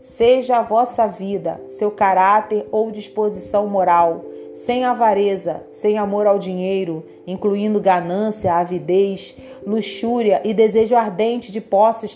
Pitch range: 190-255 Hz